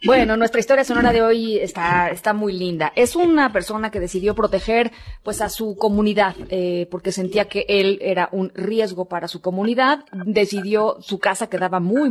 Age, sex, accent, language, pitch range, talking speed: 30-49, female, Mexican, Spanish, 175-215 Hz, 180 wpm